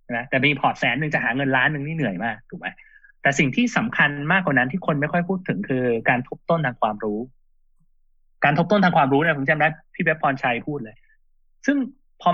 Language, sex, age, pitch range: Thai, male, 20-39, 135-180 Hz